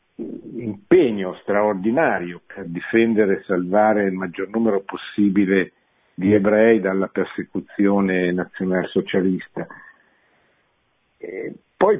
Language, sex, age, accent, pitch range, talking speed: Italian, male, 50-69, native, 100-120 Hz, 80 wpm